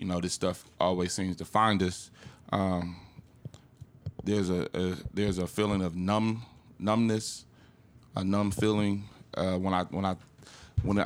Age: 20-39